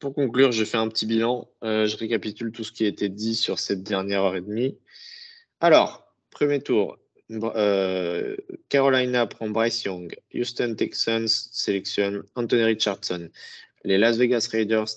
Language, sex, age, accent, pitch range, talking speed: French, male, 20-39, French, 100-115 Hz, 155 wpm